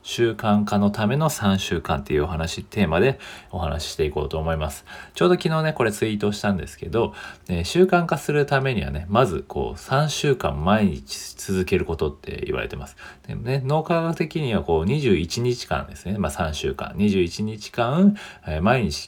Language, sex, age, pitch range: Japanese, male, 40-59, 85-140 Hz